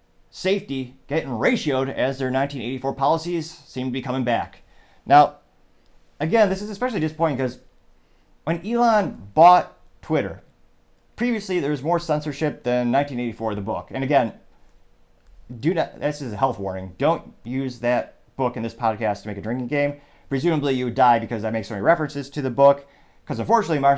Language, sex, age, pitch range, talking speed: English, male, 30-49, 110-145 Hz, 170 wpm